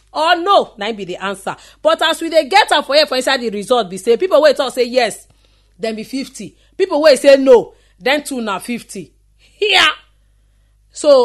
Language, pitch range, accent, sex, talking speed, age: English, 200-295 Hz, Nigerian, female, 220 wpm, 40-59